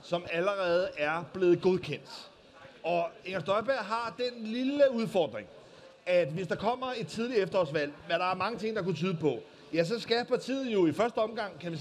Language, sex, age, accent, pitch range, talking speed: Danish, male, 30-49, native, 170-225 Hz, 195 wpm